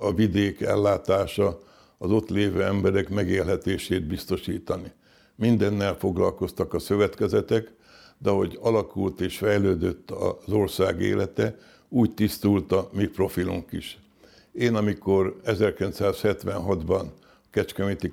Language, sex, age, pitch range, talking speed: Hungarian, male, 60-79, 95-105 Hz, 105 wpm